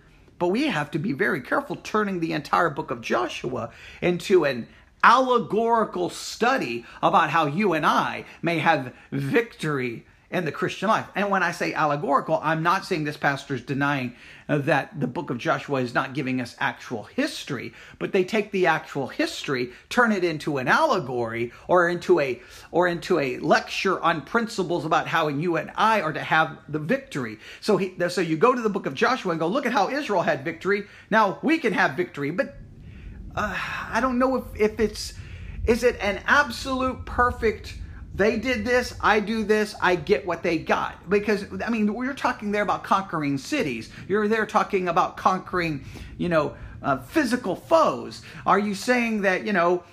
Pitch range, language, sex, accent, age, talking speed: 160-220 Hz, English, male, American, 40-59, 185 wpm